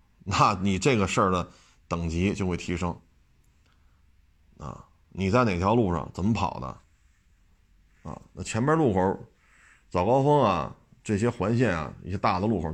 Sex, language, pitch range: male, Chinese, 90-120 Hz